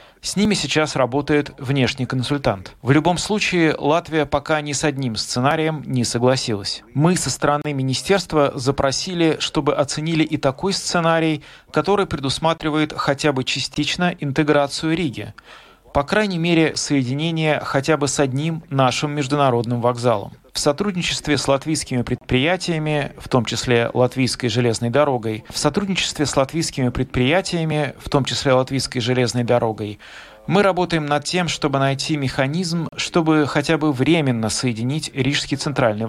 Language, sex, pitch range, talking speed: Russian, male, 130-160 Hz, 135 wpm